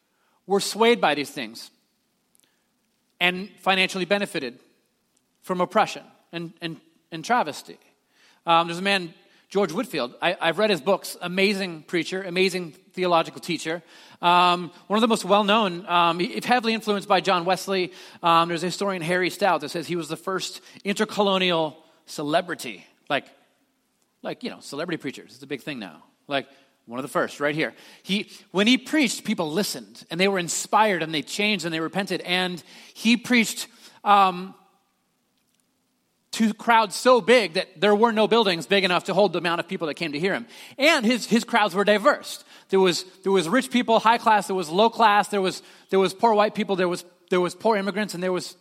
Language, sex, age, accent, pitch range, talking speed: English, male, 30-49, American, 175-215 Hz, 190 wpm